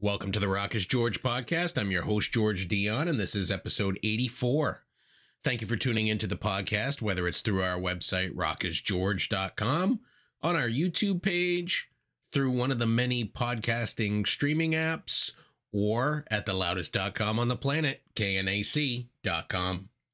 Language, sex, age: English, male, 30-49